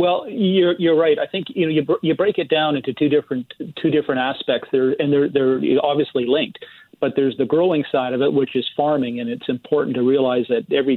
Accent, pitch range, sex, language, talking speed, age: American, 130-150 Hz, male, English, 230 wpm, 40-59